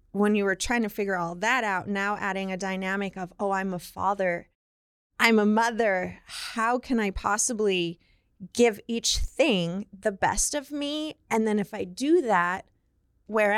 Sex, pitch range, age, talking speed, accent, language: female, 185-220 Hz, 20-39, 170 wpm, American, English